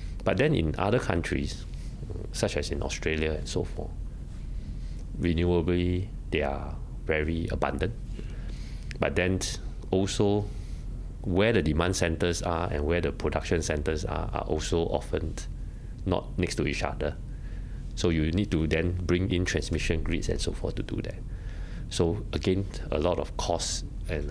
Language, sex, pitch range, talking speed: English, male, 80-95 Hz, 150 wpm